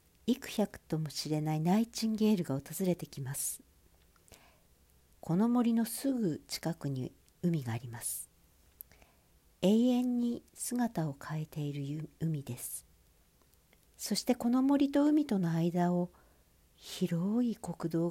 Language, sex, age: Japanese, female, 60-79